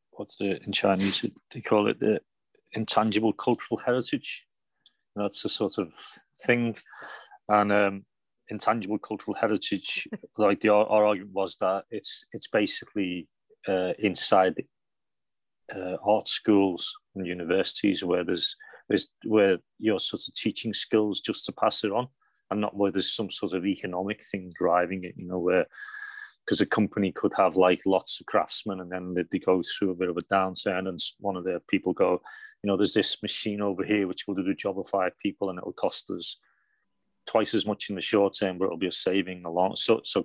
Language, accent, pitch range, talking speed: English, British, 95-105 Hz, 190 wpm